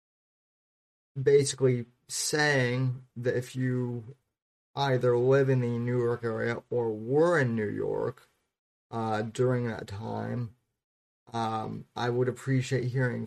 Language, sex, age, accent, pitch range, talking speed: English, male, 30-49, American, 110-125 Hz, 120 wpm